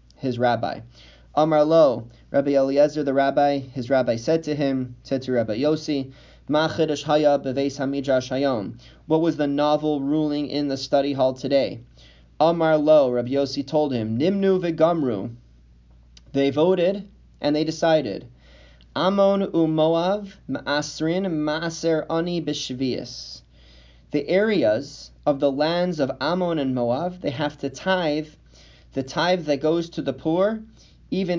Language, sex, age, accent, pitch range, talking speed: English, male, 30-49, American, 115-155 Hz, 125 wpm